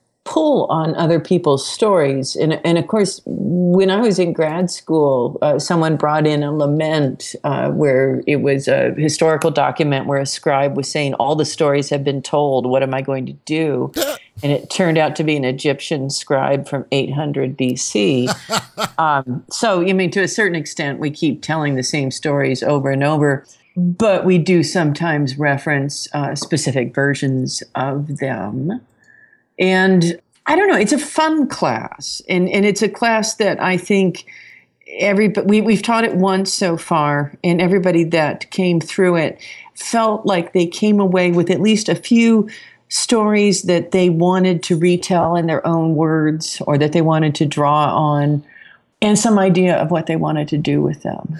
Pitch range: 145-185 Hz